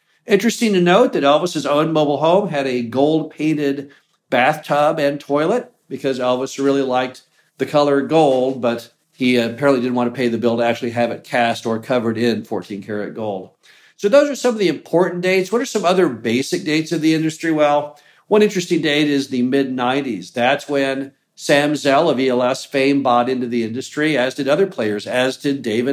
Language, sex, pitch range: English, male, 130-180 Hz